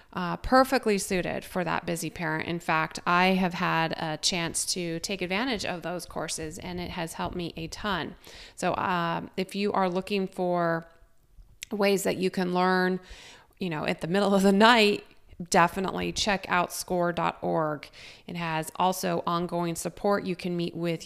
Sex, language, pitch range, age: female, English, 170-205 Hz, 30-49